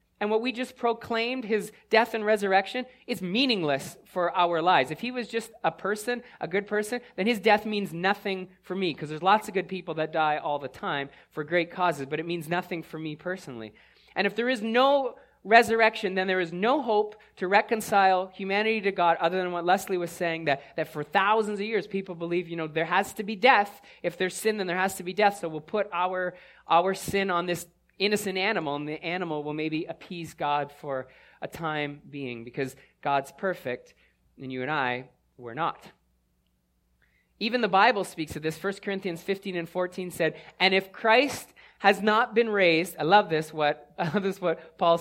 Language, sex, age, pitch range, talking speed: English, male, 30-49, 165-215 Hz, 205 wpm